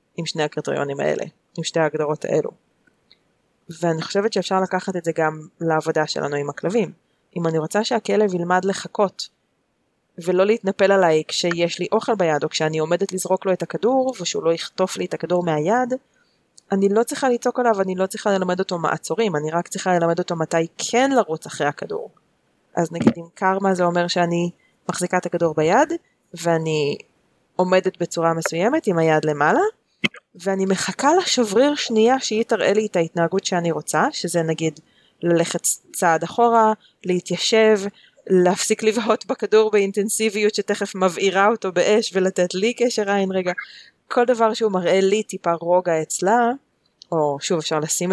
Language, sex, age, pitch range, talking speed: Hebrew, female, 20-39, 170-215 Hz, 160 wpm